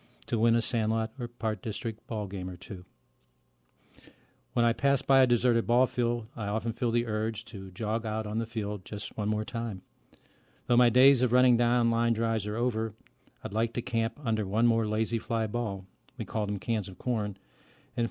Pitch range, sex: 105-125 Hz, male